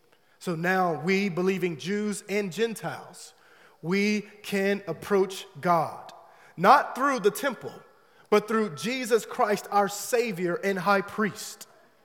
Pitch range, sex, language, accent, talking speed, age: 170-220 Hz, male, English, American, 120 wpm, 30-49